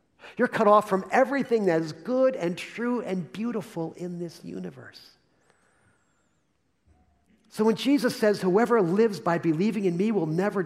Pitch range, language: 140-210 Hz, English